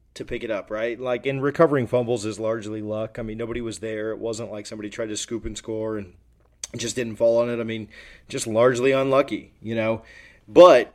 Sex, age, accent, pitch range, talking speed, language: male, 20-39, American, 115-135 Hz, 220 wpm, English